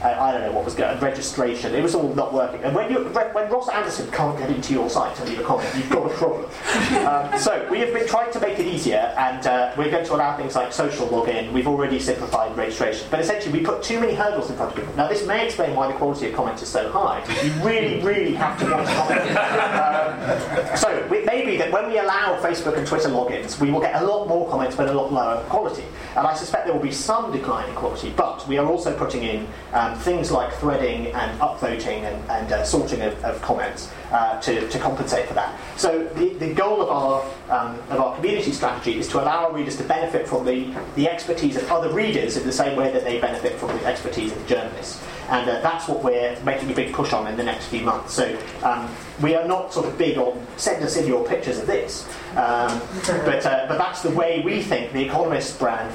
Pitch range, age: 130-185 Hz, 30-49